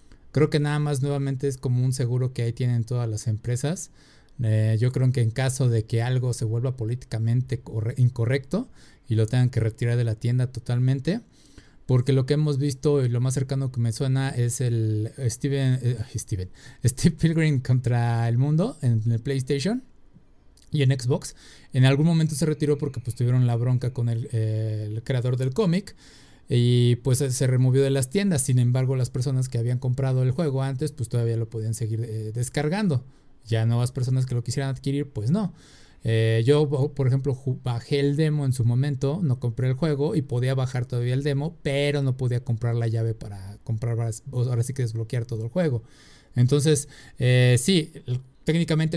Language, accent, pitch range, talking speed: Spanish, Mexican, 120-140 Hz, 185 wpm